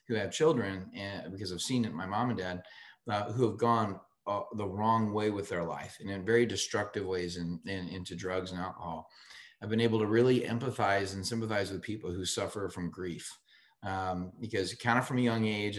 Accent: American